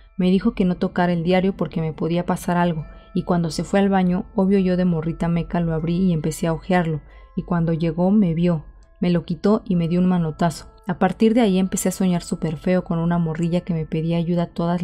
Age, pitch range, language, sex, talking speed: 30-49, 165-190 Hz, Spanish, female, 240 wpm